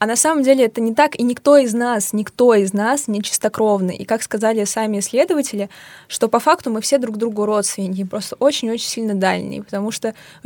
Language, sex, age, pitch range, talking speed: Russian, female, 20-39, 200-235 Hz, 205 wpm